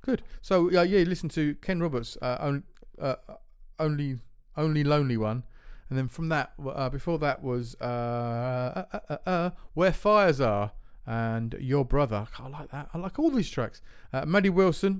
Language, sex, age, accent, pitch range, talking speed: English, male, 40-59, British, 120-165 Hz, 185 wpm